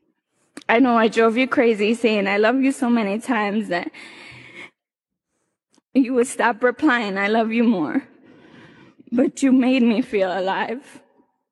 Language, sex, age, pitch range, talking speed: English, female, 10-29, 230-275 Hz, 145 wpm